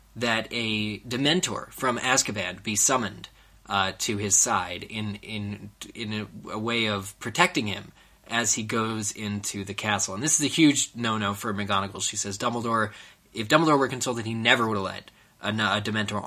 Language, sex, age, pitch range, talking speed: English, male, 20-39, 100-125 Hz, 180 wpm